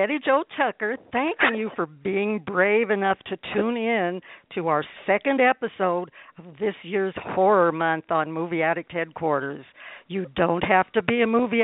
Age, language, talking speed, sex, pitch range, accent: 60-79, English, 165 wpm, female, 170-220 Hz, American